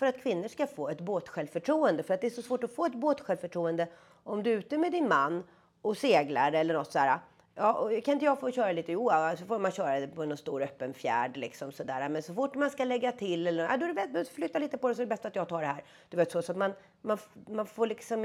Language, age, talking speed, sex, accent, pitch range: Swedish, 30-49, 250 wpm, female, native, 170-245 Hz